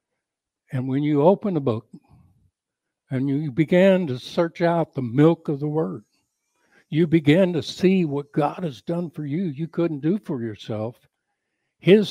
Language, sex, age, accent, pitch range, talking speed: English, male, 60-79, American, 120-155 Hz, 165 wpm